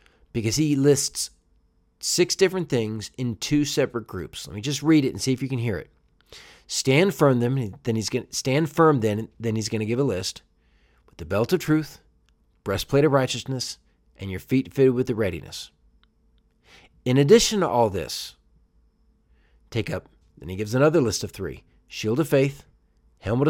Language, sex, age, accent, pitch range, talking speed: English, male, 40-59, American, 105-145 Hz, 185 wpm